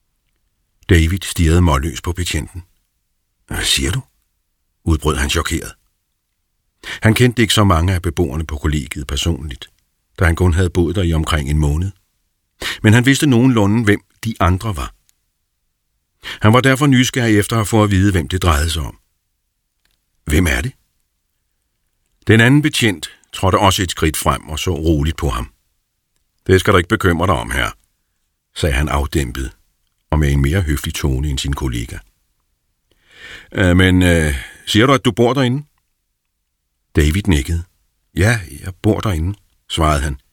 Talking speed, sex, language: 155 wpm, male, Danish